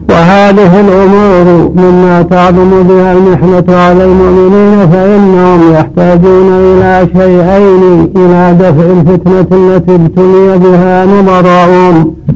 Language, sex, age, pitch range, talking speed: Arabic, male, 60-79, 180-185 Hz, 90 wpm